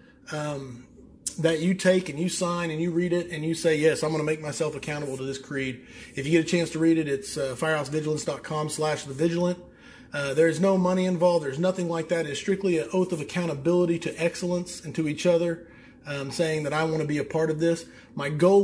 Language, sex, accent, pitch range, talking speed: English, male, American, 155-185 Hz, 235 wpm